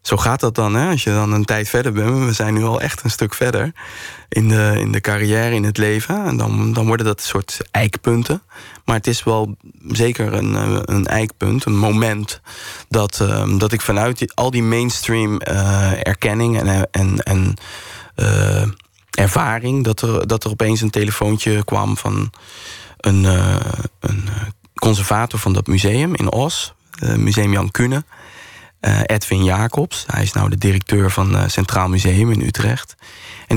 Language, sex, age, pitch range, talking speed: Dutch, male, 20-39, 100-115 Hz, 175 wpm